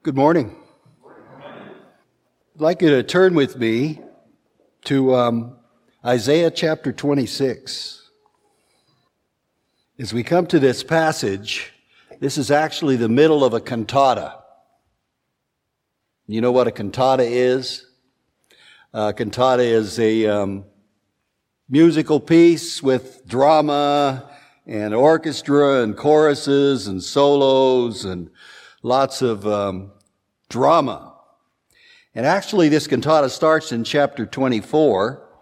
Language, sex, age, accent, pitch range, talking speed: English, male, 60-79, American, 120-160 Hz, 105 wpm